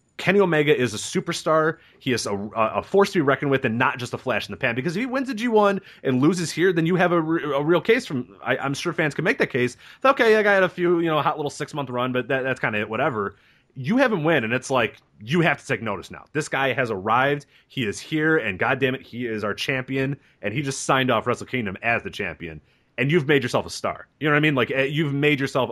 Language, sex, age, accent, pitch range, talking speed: English, male, 30-49, American, 110-155 Hz, 280 wpm